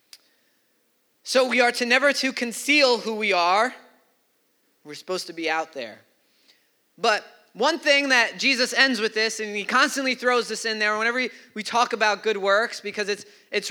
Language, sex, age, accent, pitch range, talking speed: English, male, 20-39, American, 215-275 Hz, 175 wpm